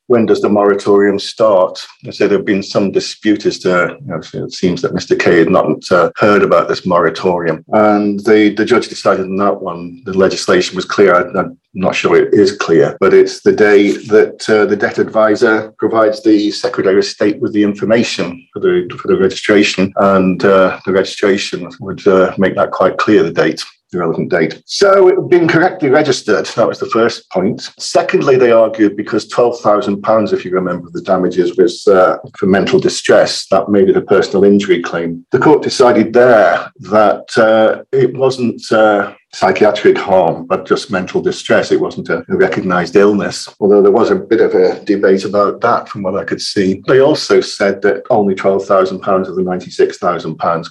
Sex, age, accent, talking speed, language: male, 50-69, British, 185 wpm, English